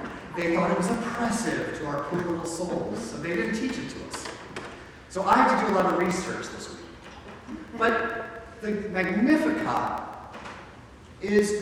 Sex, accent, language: male, American, English